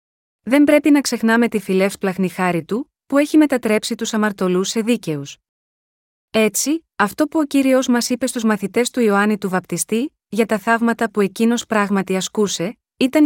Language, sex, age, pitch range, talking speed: Greek, female, 20-39, 205-250 Hz, 165 wpm